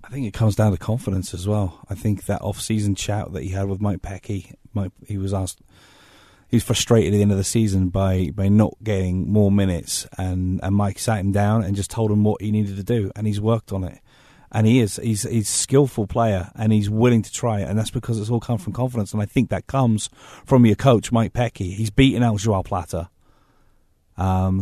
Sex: male